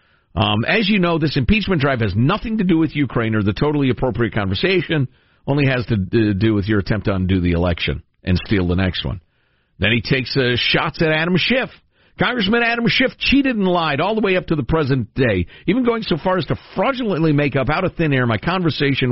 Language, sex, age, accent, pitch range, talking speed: English, male, 50-69, American, 100-150 Hz, 225 wpm